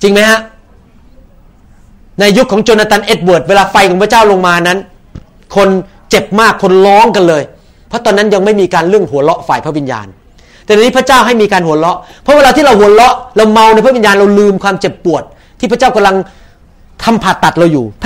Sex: male